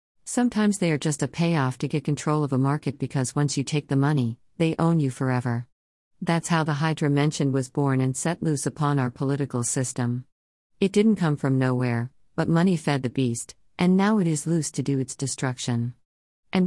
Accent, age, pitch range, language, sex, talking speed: American, 50-69, 130-165 Hz, English, female, 200 wpm